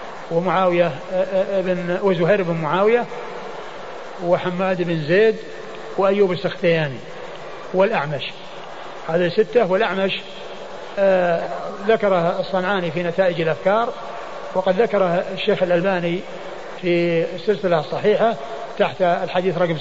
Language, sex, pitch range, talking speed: Arabic, male, 175-205 Hz, 90 wpm